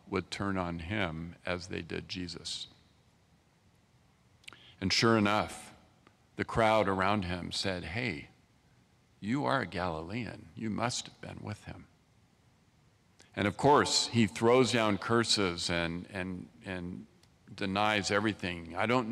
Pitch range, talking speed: 95-115 Hz, 130 wpm